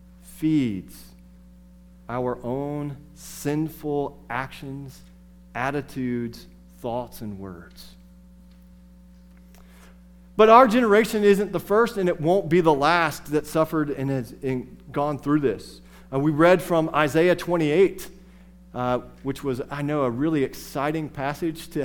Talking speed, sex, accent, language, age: 120 wpm, male, American, English, 40-59